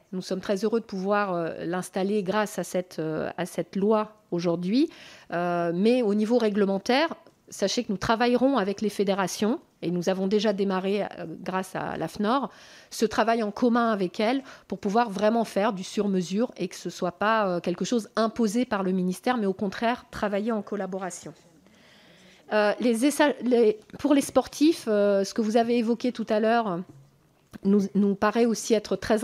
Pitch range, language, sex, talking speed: 195-235 Hz, French, female, 185 wpm